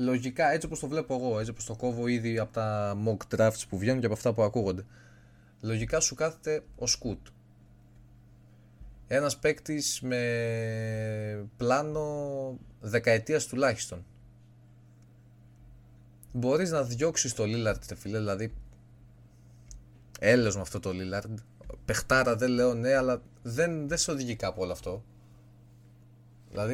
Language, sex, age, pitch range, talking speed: Greek, male, 20-39, 95-130 Hz, 130 wpm